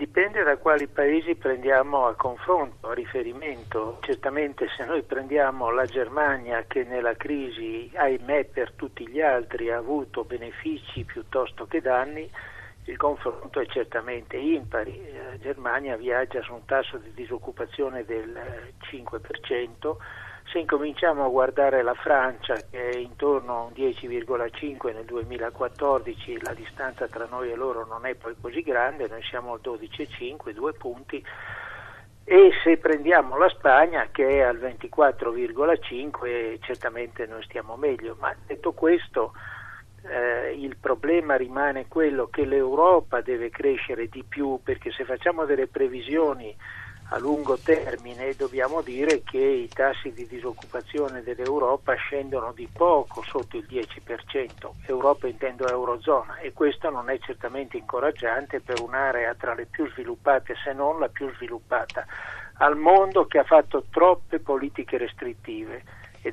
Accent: native